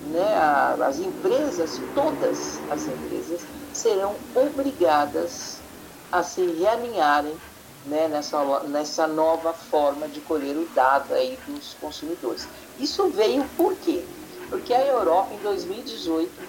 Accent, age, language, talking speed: Brazilian, 50-69, Portuguese, 120 wpm